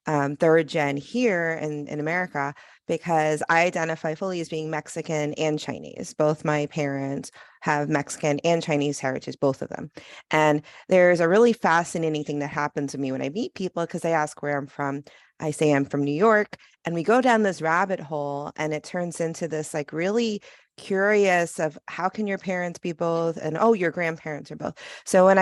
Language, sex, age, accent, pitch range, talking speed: English, female, 30-49, American, 150-180 Hz, 195 wpm